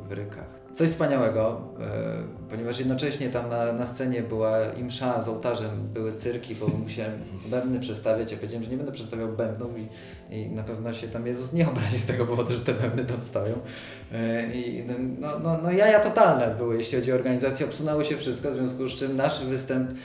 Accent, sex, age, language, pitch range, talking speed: native, male, 20-39, Polish, 115-130 Hz, 195 wpm